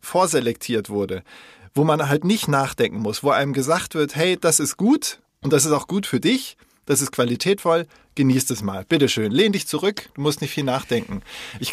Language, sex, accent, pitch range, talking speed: German, male, German, 125-155 Hz, 200 wpm